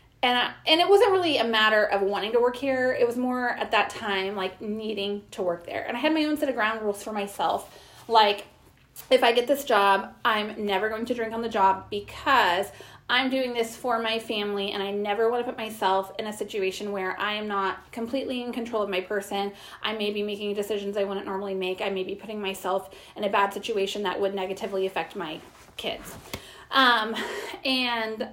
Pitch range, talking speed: 200-245 Hz, 215 wpm